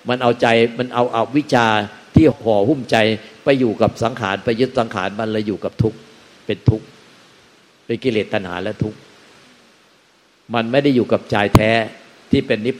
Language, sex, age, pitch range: Thai, male, 60-79, 115-145 Hz